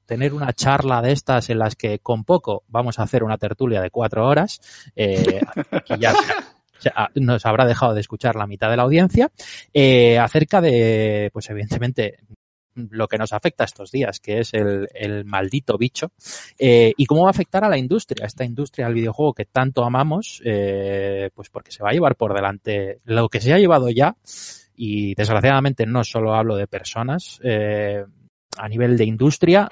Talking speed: 190 wpm